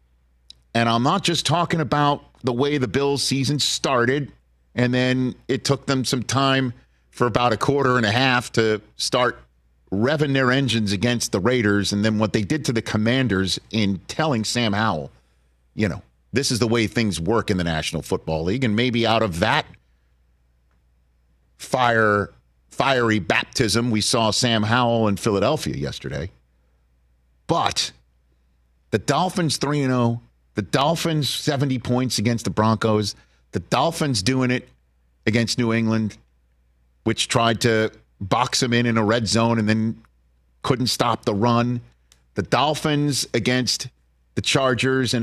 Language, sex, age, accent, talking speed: English, male, 50-69, American, 150 wpm